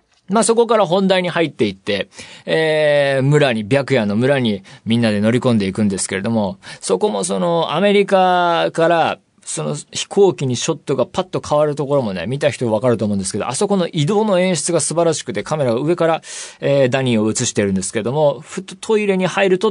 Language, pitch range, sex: Japanese, 120-180 Hz, male